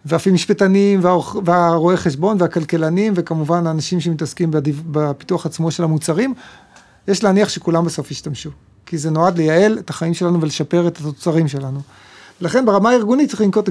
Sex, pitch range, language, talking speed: male, 160-190 Hz, Hebrew, 160 wpm